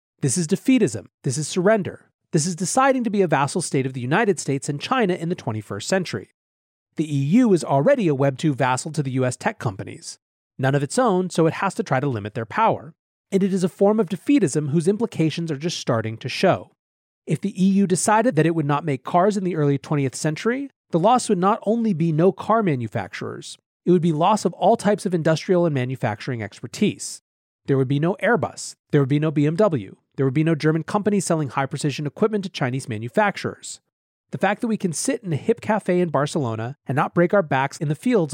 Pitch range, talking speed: 135-195 Hz, 220 wpm